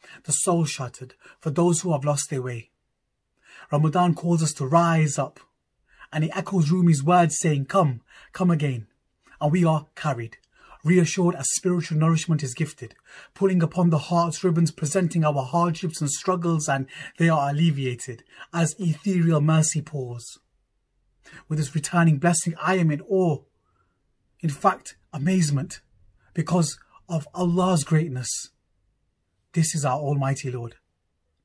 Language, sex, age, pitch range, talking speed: English, male, 30-49, 140-170 Hz, 140 wpm